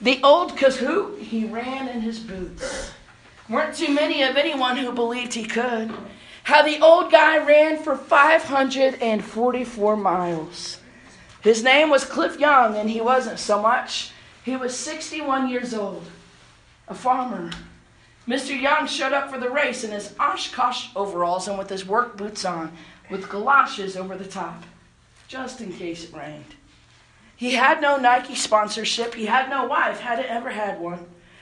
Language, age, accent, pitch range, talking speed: English, 40-59, American, 190-260 Hz, 155 wpm